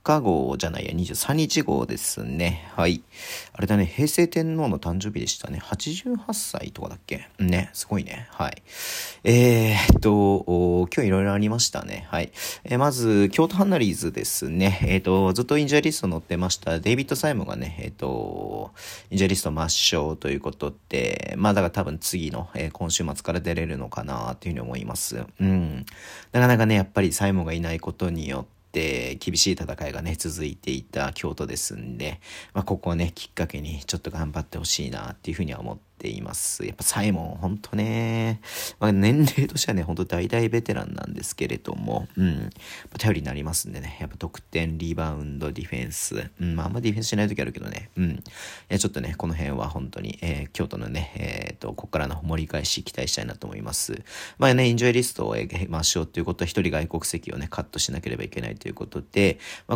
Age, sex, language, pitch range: 40-59, male, Japanese, 80-105 Hz